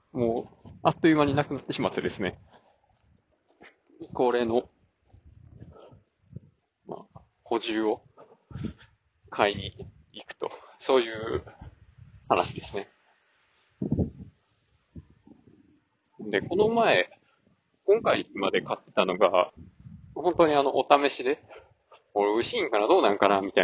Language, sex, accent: Japanese, male, native